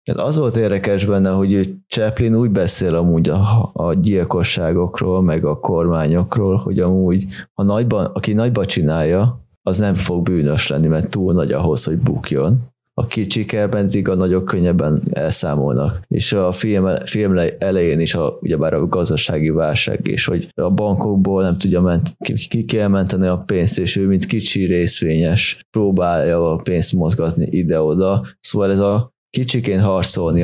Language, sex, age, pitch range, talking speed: Hungarian, male, 20-39, 90-105 Hz, 155 wpm